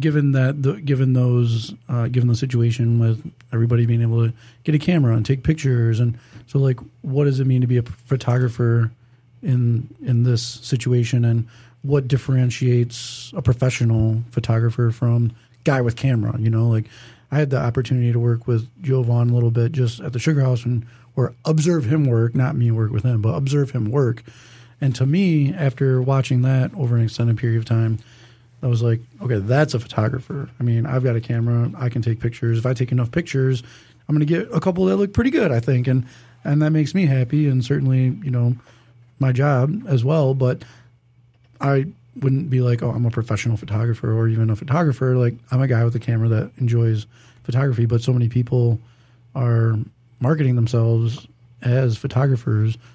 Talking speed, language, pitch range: 195 wpm, English, 115-130 Hz